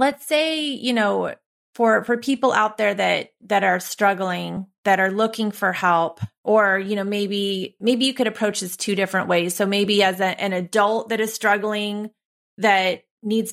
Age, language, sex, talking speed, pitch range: 30-49, English, female, 180 wpm, 185-215 Hz